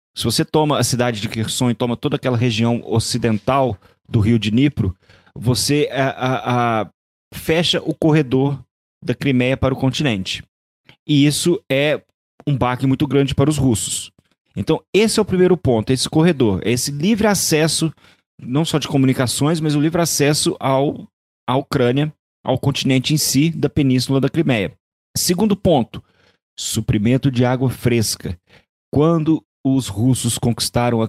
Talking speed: 155 wpm